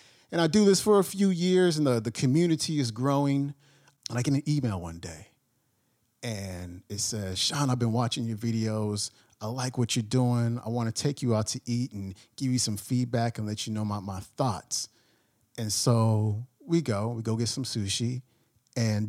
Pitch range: 110-130 Hz